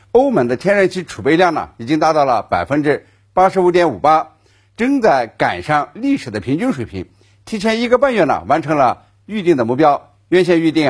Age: 50-69